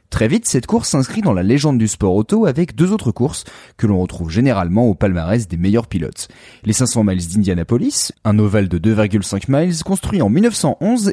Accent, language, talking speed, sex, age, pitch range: French, French, 195 wpm, male, 30-49, 95-155 Hz